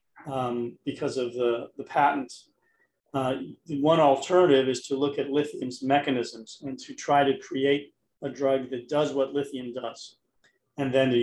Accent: American